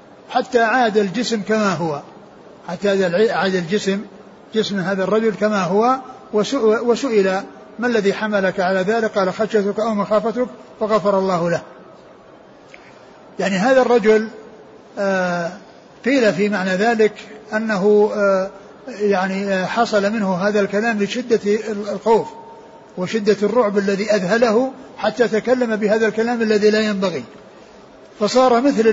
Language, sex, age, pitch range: Arabic, male, 60-79, 195-225 Hz